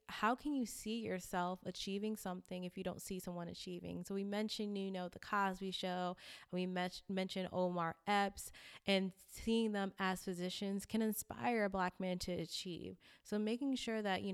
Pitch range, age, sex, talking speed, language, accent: 180-210 Hz, 20-39, female, 175 wpm, English, American